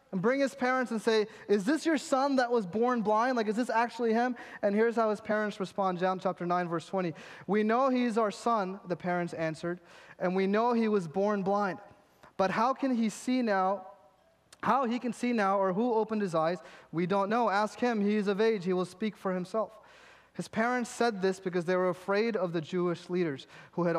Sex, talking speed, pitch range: male, 225 wpm, 180-230 Hz